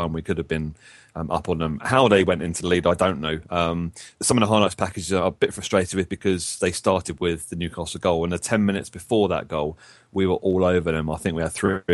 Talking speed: 260 wpm